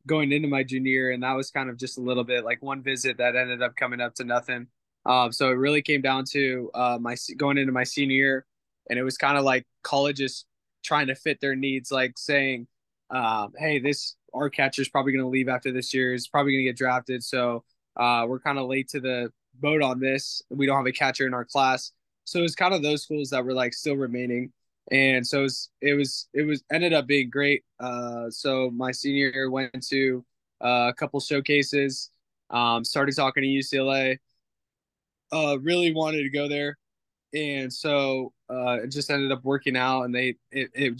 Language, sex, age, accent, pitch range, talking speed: English, male, 20-39, American, 125-140 Hz, 220 wpm